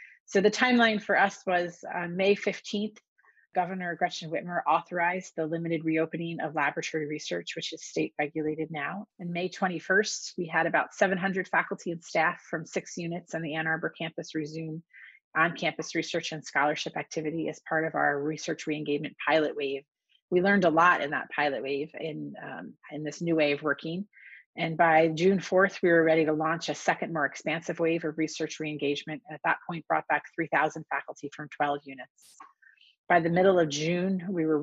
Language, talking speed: English, 185 wpm